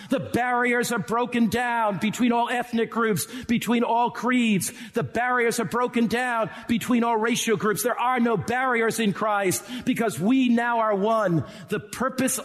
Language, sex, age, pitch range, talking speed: English, male, 50-69, 170-230 Hz, 165 wpm